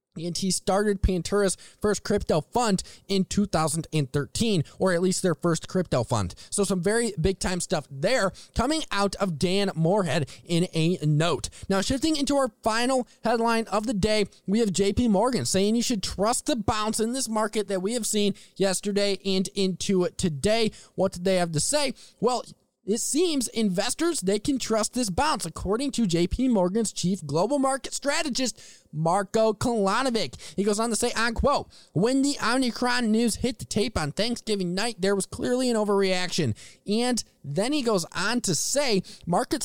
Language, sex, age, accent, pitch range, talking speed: English, male, 20-39, American, 185-230 Hz, 175 wpm